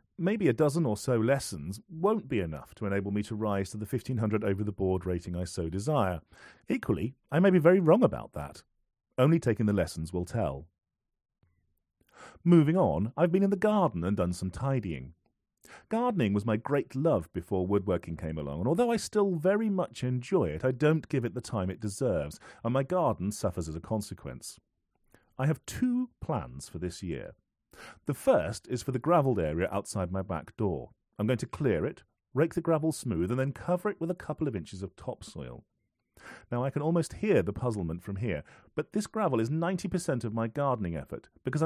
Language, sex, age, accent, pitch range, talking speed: English, male, 40-59, British, 95-150 Hz, 195 wpm